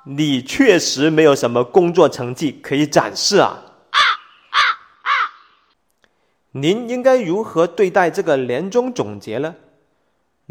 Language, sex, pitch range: Chinese, male, 135-205 Hz